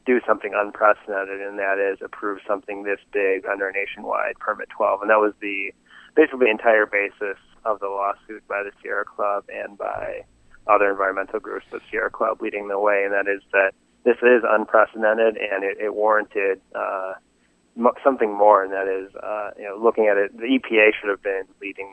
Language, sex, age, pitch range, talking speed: English, male, 20-39, 95-110 Hz, 190 wpm